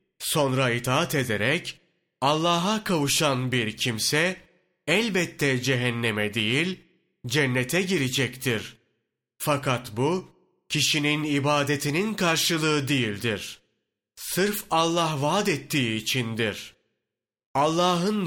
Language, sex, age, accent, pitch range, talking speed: Turkish, male, 30-49, native, 125-170 Hz, 80 wpm